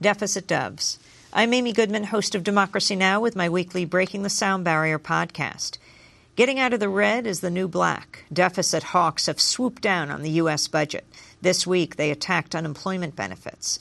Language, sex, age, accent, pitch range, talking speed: English, female, 50-69, American, 155-195 Hz, 180 wpm